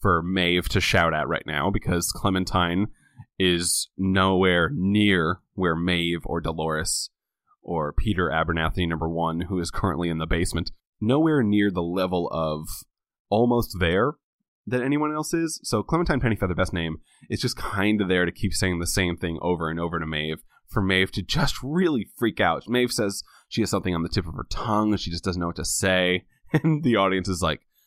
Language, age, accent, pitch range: English, 20-39, American, 85-110 Hz